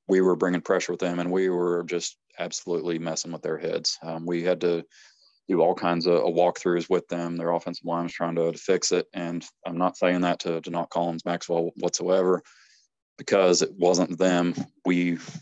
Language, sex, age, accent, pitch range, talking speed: English, male, 20-39, American, 85-90 Hz, 200 wpm